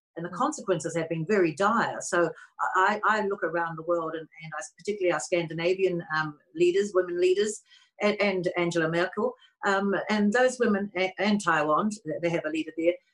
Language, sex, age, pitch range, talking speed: English, female, 60-79, 170-225 Hz, 180 wpm